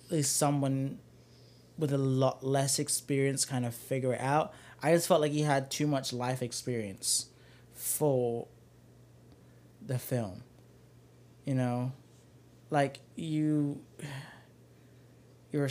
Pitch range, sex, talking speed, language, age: 120-145 Hz, male, 115 wpm, English, 20-39